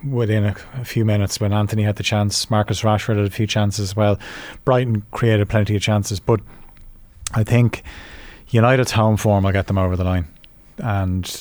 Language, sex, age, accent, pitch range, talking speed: English, male, 30-49, Irish, 95-110 Hz, 190 wpm